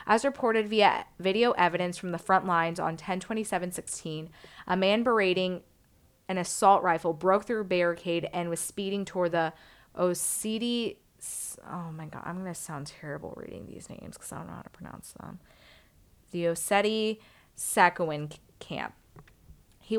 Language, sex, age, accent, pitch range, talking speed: English, female, 20-39, American, 165-195 Hz, 150 wpm